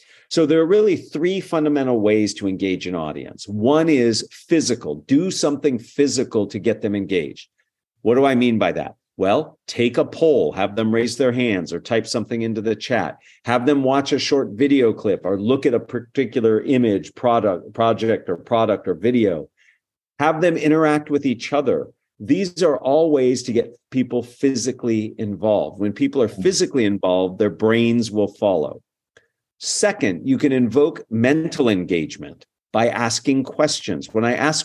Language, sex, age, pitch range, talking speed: English, male, 50-69, 110-150 Hz, 170 wpm